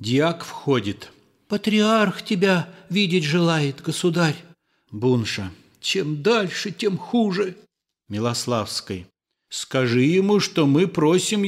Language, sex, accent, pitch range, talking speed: Russian, male, native, 120-175 Hz, 95 wpm